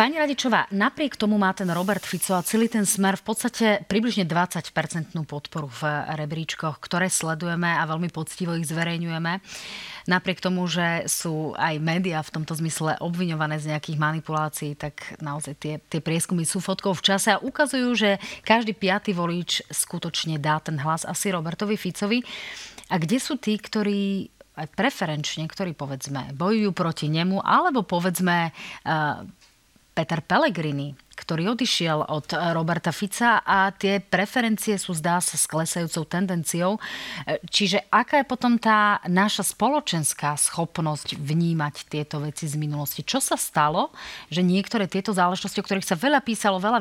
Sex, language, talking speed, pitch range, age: female, Slovak, 145 wpm, 160-205 Hz, 30-49